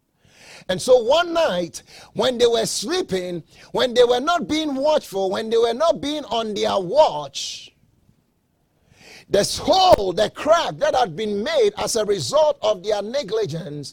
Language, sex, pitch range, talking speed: English, male, 195-300 Hz, 155 wpm